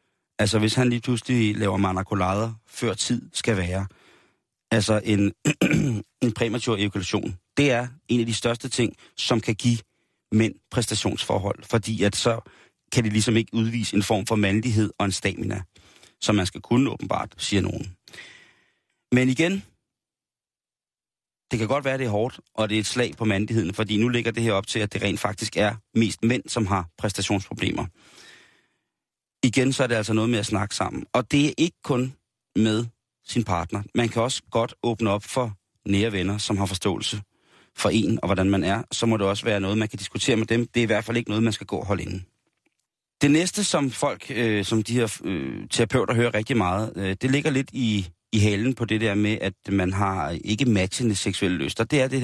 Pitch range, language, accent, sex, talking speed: 100-120 Hz, Danish, native, male, 205 wpm